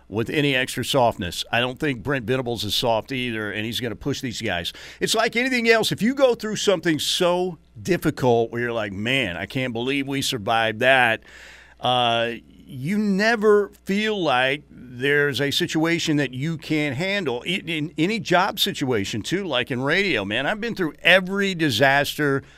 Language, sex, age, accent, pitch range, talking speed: English, male, 50-69, American, 105-145 Hz, 180 wpm